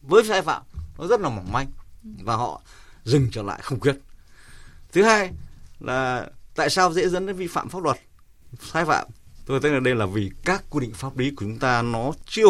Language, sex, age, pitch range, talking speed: Vietnamese, male, 20-39, 110-155 Hz, 215 wpm